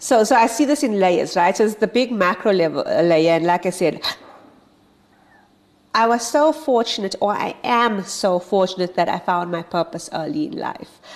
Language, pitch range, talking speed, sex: English, 165-195 Hz, 200 wpm, female